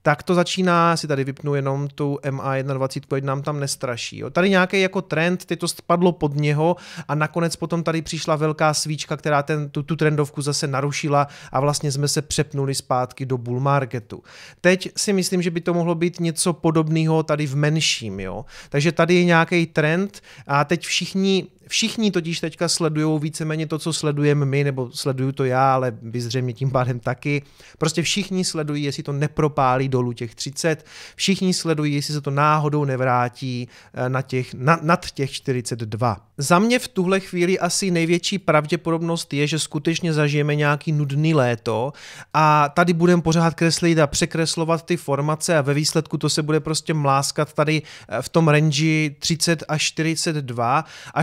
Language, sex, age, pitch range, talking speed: Czech, male, 30-49, 140-165 Hz, 170 wpm